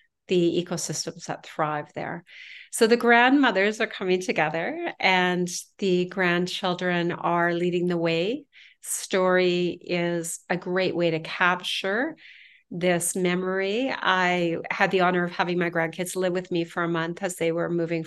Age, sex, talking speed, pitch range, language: 40-59, female, 150 wpm, 170-195 Hz, English